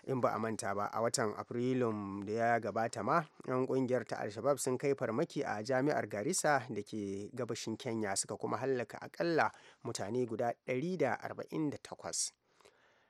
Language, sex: English, male